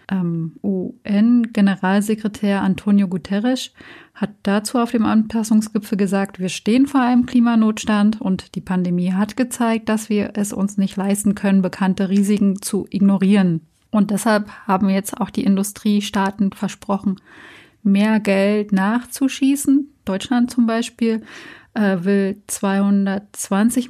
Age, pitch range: 30-49, 195-235 Hz